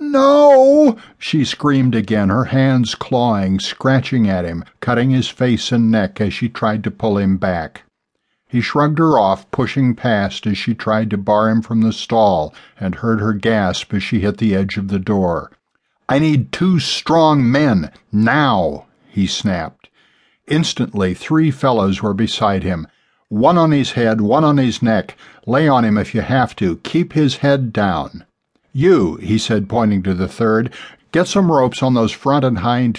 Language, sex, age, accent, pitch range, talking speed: English, male, 60-79, American, 100-125 Hz, 175 wpm